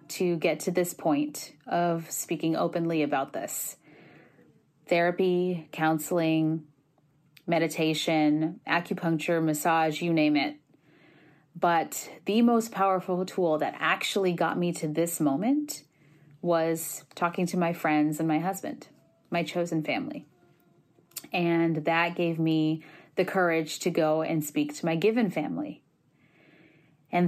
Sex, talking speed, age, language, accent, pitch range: female, 125 wpm, 20-39, English, American, 160-175 Hz